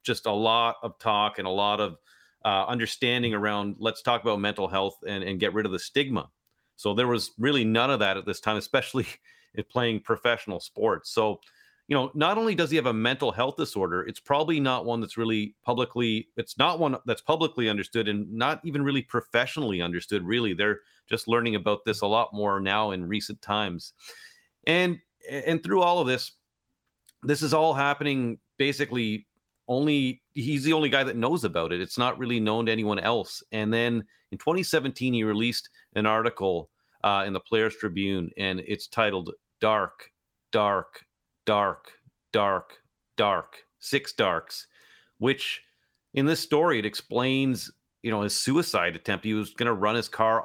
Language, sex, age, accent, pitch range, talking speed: English, male, 40-59, American, 105-130 Hz, 180 wpm